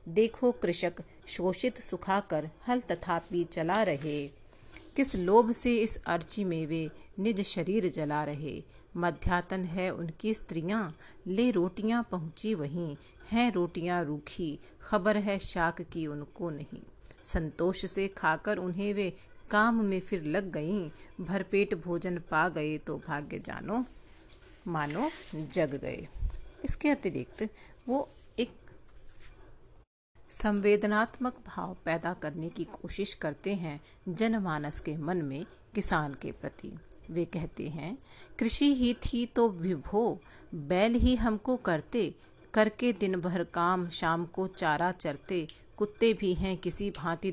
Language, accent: Hindi, native